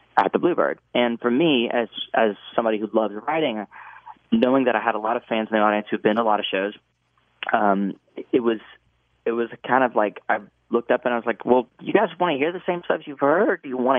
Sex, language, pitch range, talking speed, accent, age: male, English, 105-130 Hz, 260 wpm, American, 30-49